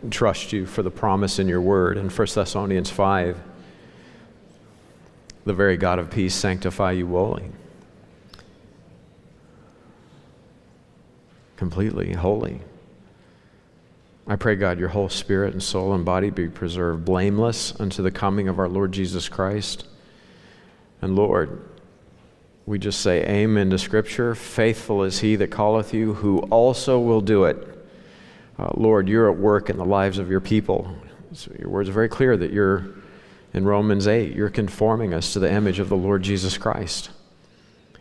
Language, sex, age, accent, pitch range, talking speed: English, male, 50-69, American, 95-110 Hz, 150 wpm